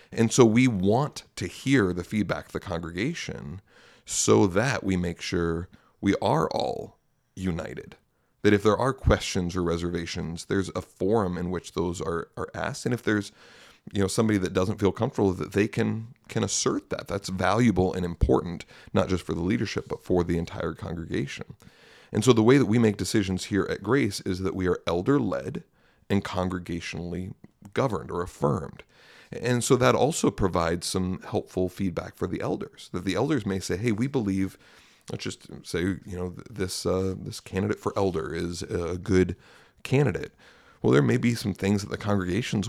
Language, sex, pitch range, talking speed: English, male, 90-110 Hz, 185 wpm